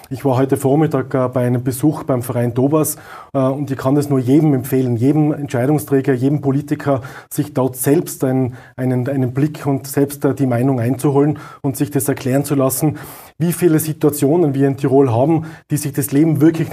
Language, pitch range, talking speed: German, 135-150 Hz, 185 wpm